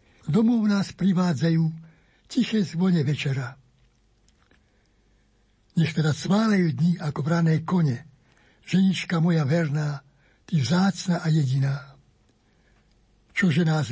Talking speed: 95 wpm